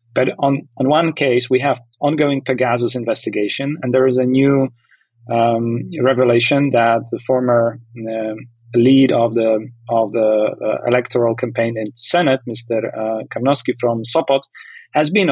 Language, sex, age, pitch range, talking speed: English, male, 30-49, 115-135 Hz, 155 wpm